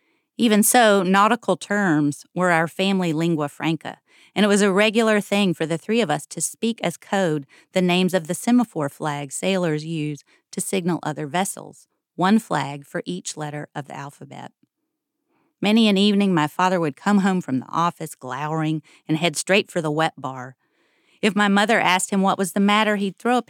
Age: 40-59